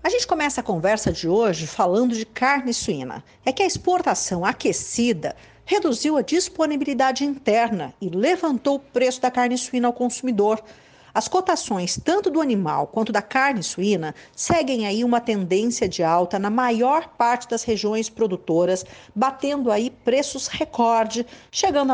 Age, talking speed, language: 50-69, 150 wpm, Portuguese